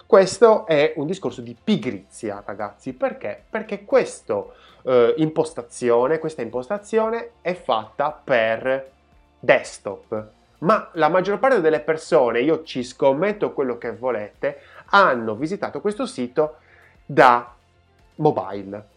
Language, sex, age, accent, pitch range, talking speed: Italian, male, 30-49, native, 115-175 Hz, 110 wpm